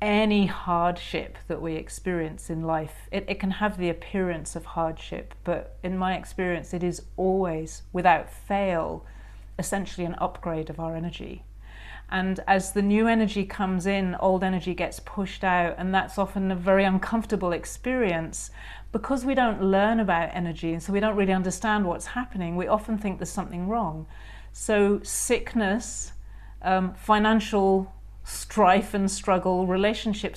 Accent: British